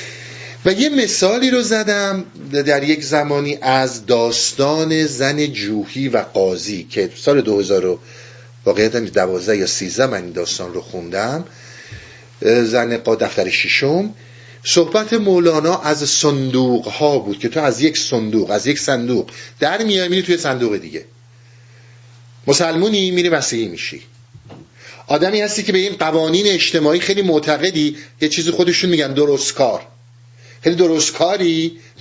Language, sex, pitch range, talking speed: Persian, male, 120-165 Hz, 135 wpm